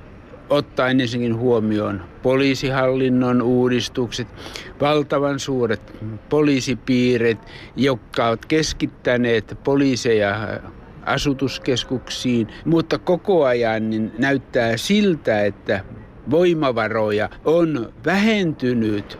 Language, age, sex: Finnish, 60-79, male